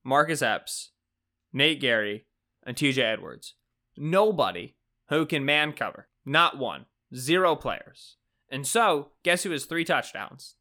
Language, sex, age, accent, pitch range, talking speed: English, male, 20-39, American, 135-195 Hz, 130 wpm